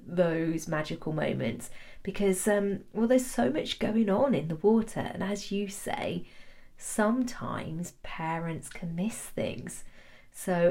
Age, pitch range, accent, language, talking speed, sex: 40-59, 155-215 Hz, British, English, 135 wpm, female